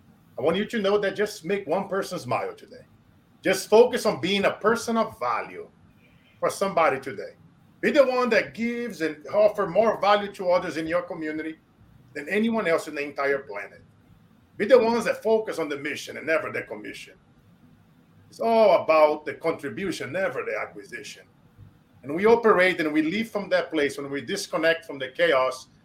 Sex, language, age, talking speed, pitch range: male, English, 40-59, 185 wpm, 150-215 Hz